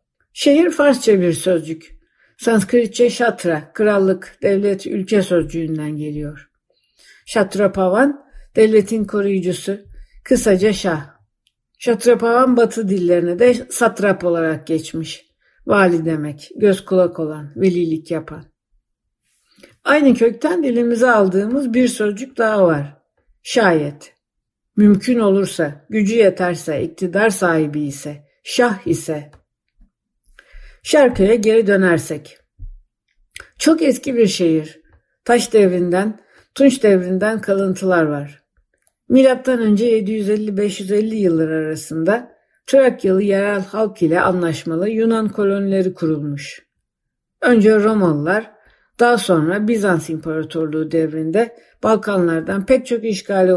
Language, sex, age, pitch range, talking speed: Turkish, female, 60-79, 165-230 Hz, 95 wpm